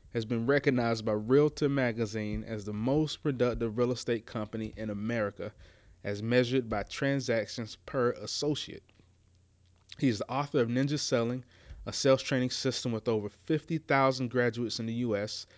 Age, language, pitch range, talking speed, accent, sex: 30-49, English, 105-130 Hz, 150 wpm, American, male